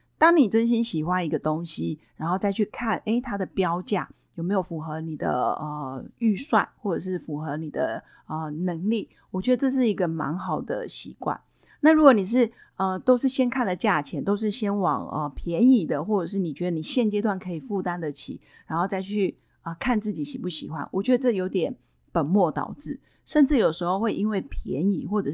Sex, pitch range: female, 165-220 Hz